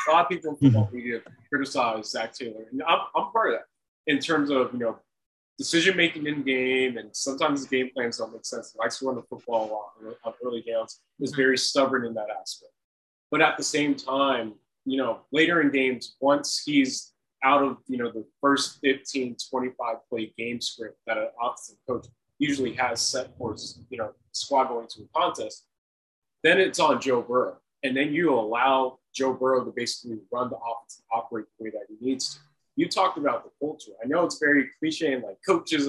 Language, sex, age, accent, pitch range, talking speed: English, male, 20-39, American, 120-150 Hz, 205 wpm